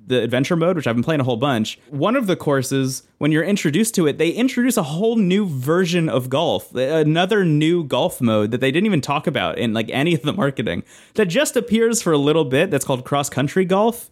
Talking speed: 235 wpm